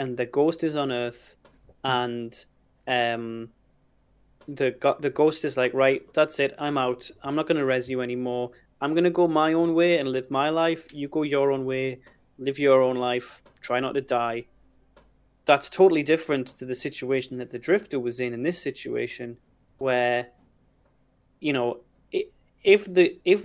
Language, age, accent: English, 20-39, British